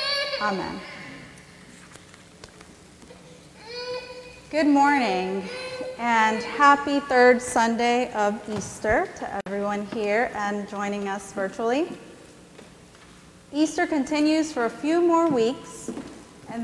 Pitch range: 210-290 Hz